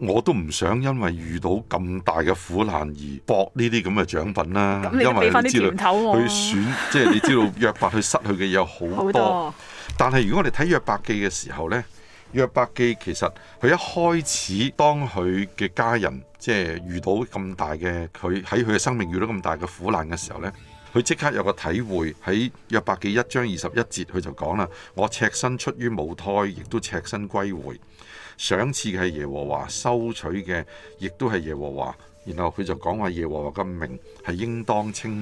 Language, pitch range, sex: Chinese, 85-115 Hz, male